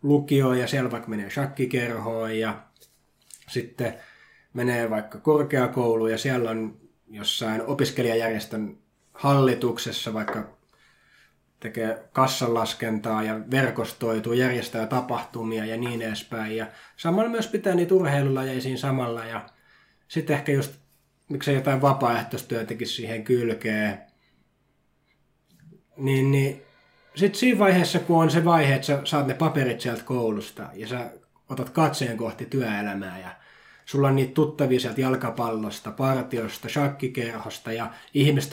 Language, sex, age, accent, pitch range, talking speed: English, male, 20-39, Finnish, 115-140 Hz, 115 wpm